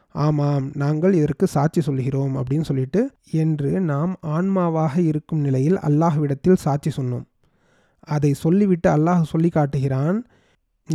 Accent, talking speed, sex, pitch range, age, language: native, 110 wpm, male, 145-170 Hz, 30-49, Tamil